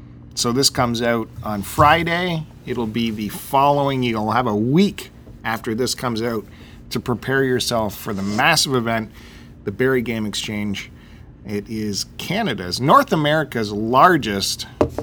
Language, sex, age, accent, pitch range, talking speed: English, male, 40-59, American, 100-130 Hz, 140 wpm